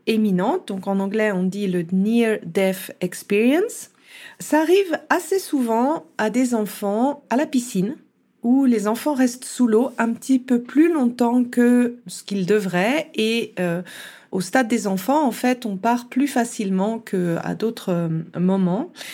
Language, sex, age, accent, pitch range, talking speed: French, female, 40-59, French, 200-255 Hz, 155 wpm